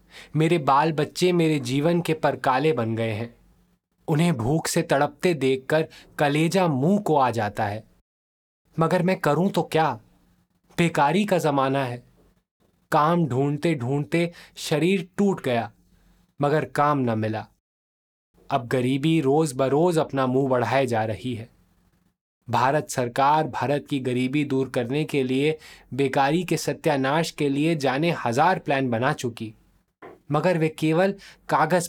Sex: male